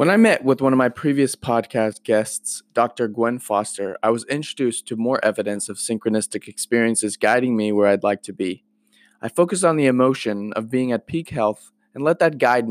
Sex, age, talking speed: male, 20-39, 205 wpm